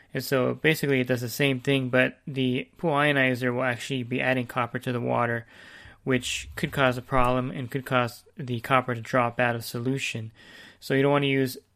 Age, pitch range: 20-39, 120-135 Hz